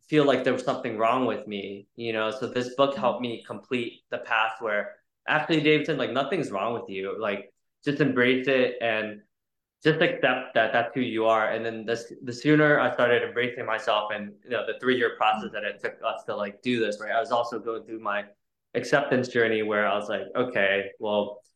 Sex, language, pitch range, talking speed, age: male, English, 115-140 Hz, 210 wpm, 20-39